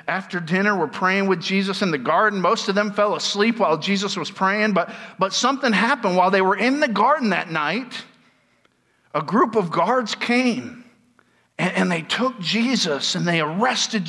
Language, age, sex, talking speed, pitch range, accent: English, 50-69, male, 185 wpm, 195-255 Hz, American